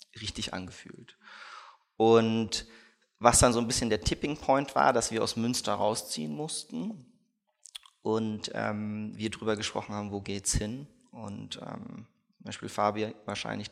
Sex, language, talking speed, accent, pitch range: male, German, 145 wpm, German, 105-115 Hz